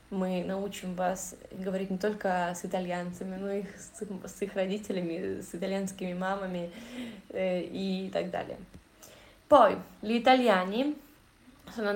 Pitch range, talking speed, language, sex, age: 180-215 Hz, 120 wpm, Italian, female, 20-39